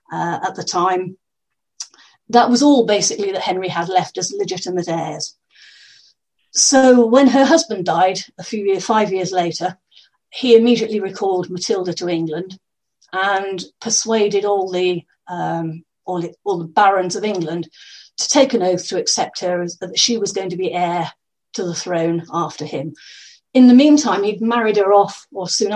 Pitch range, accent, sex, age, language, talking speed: 180-230 Hz, British, female, 40-59, English, 160 wpm